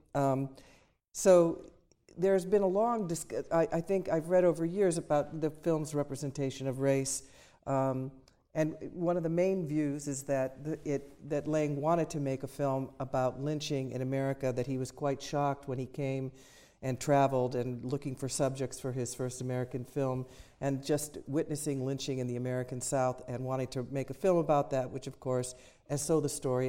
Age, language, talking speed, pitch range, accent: 50-69, English, 180 wpm, 130-150 Hz, American